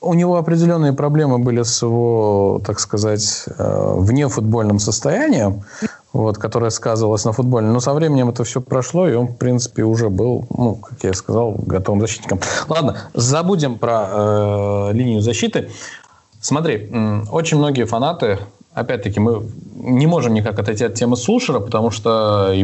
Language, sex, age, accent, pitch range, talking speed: Russian, male, 20-39, native, 105-130 Hz, 150 wpm